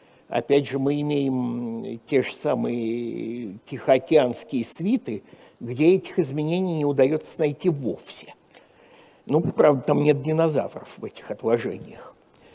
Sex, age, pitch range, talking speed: male, 60-79, 145-190 Hz, 115 wpm